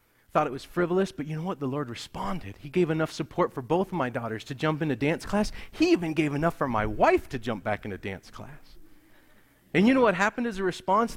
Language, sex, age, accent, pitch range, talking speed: English, male, 40-59, American, 135-190 Hz, 245 wpm